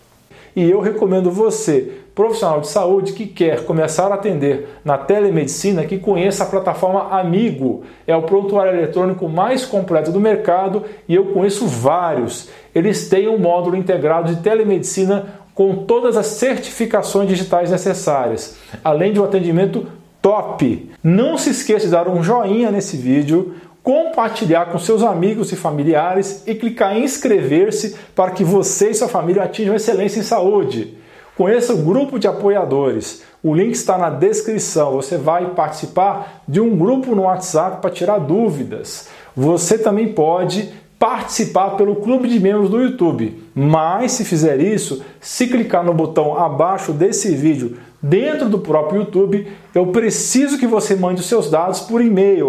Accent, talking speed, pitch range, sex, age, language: Brazilian, 155 wpm, 175-215 Hz, male, 40-59, Portuguese